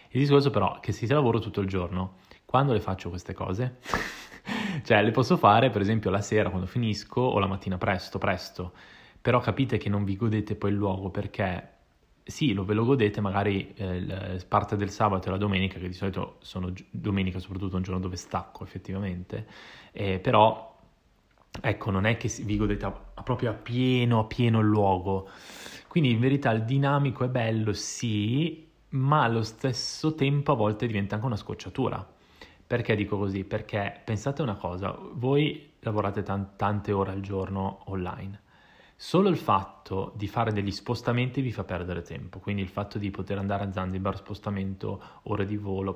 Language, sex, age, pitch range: Italian, male, 20-39, 95-115 Hz